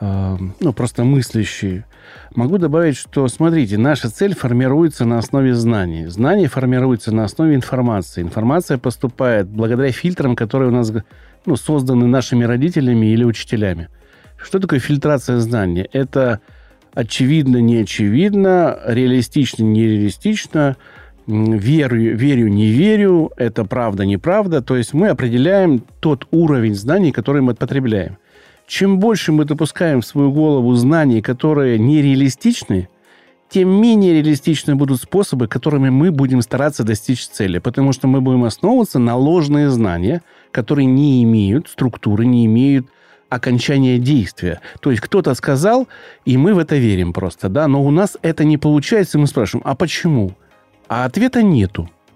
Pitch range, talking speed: 115-150 Hz, 130 wpm